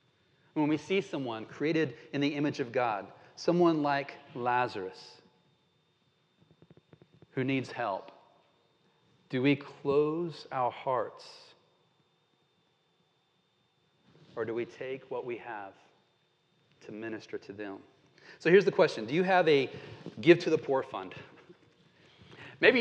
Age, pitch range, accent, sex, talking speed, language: 40-59, 140-175 Hz, American, male, 120 wpm, English